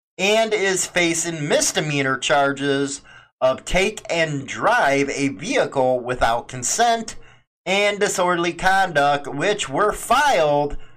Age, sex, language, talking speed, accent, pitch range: 30-49, male, English, 105 wpm, American, 140-200 Hz